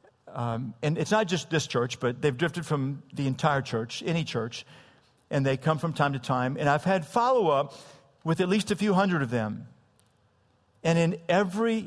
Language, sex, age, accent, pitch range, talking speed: English, male, 50-69, American, 140-180 Hz, 190 wpm